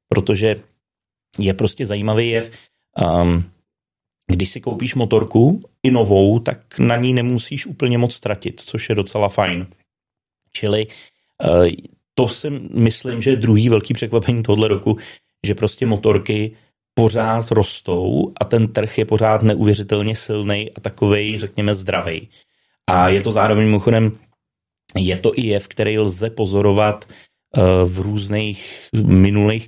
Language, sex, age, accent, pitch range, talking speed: Czech, male, 30-49, native, 100-110 Hz, 135 wpm